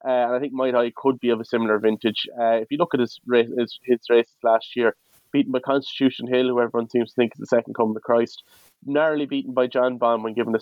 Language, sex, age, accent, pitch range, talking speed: English, male, 20-39, Irish, 115-125 Hz, 265 wpm